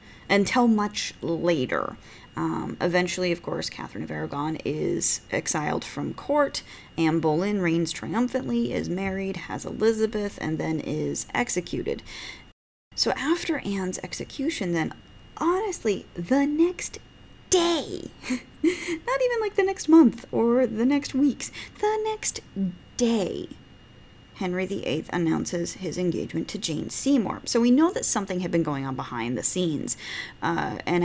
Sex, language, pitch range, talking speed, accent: female, English, 155-240 Hz, 135 wpm, American